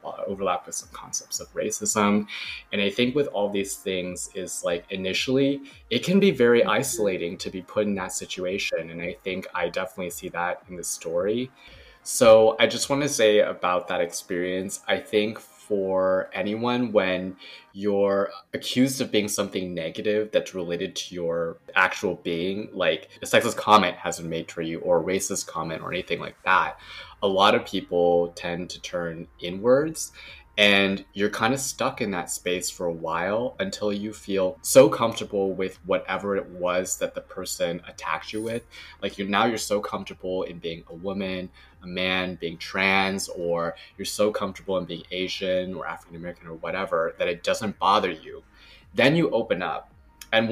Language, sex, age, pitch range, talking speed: English, male, 20-39, 90-110 Hz, 175 wpm